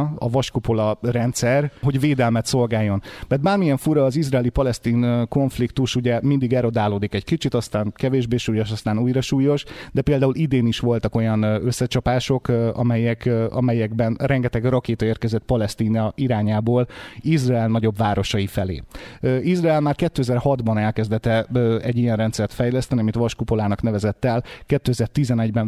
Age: 30-49